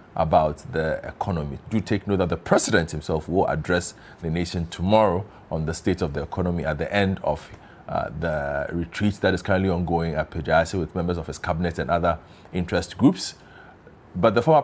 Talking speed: 190 wpm